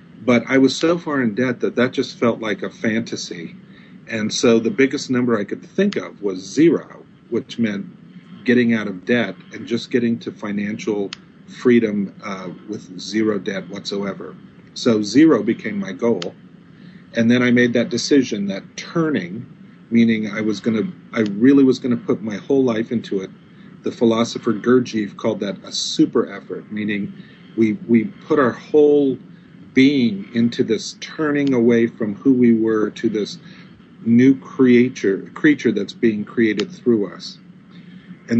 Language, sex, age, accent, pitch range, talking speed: English, male, 40-59, American, 110-140 Hz, 165 wpm